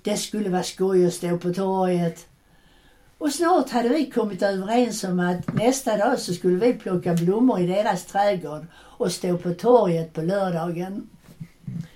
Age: 60-79